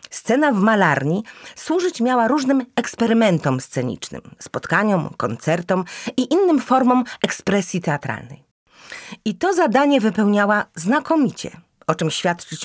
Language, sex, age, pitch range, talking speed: Polish, female, 40-59, 165-245 Hz, 110 wpm